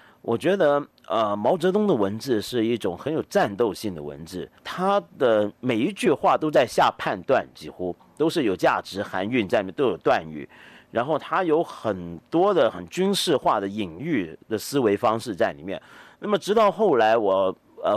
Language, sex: Chinese, male